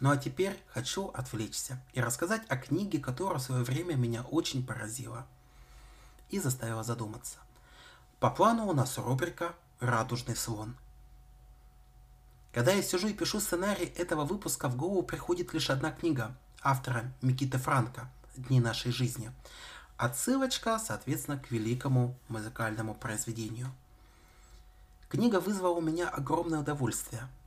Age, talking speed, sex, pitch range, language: 30-49, 125 wpm, male, 120-155 Hz, Russian